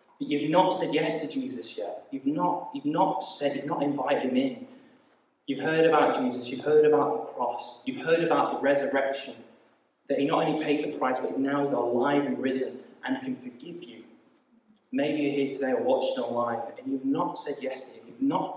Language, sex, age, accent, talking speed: English, male, 20-39, British, 205 wpm